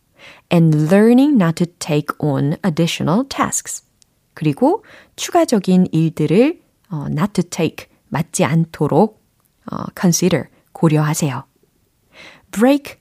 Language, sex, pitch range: Korean, female, 155-220 Hz